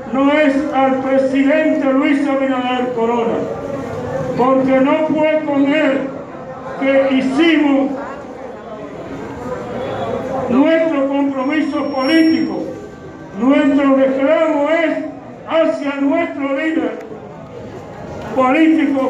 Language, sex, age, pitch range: Spanish, male, 60-79, 260-295 Hz